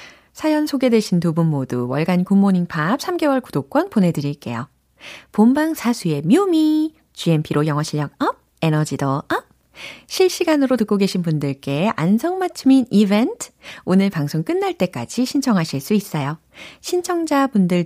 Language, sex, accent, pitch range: Korean, female, native, 160-270 Hz